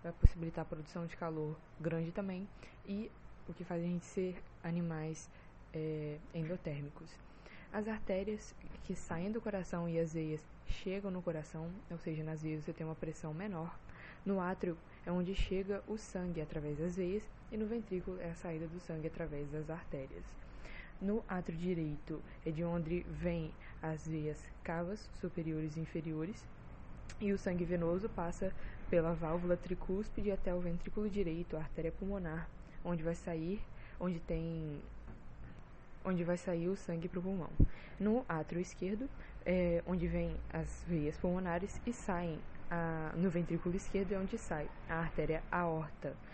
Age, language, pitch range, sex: 20-39, Portuguese, 160-185 Hz, female